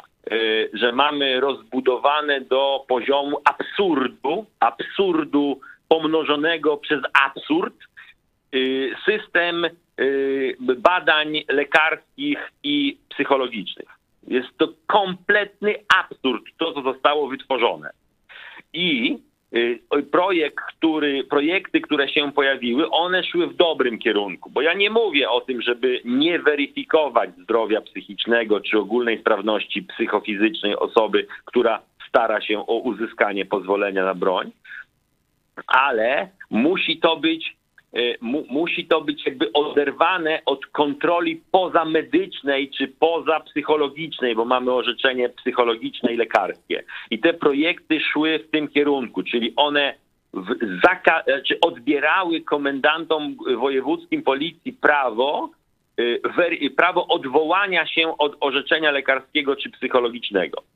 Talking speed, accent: 100 wpm, native